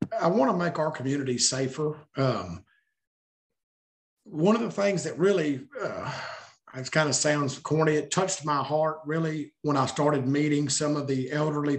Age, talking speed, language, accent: 50-69, 165 wpm, English, American